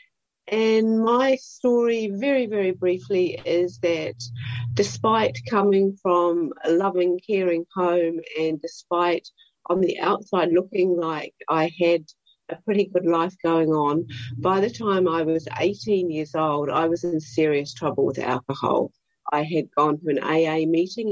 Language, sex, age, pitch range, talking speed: English, female, 50-69, 155-195 Hz, 150 wpm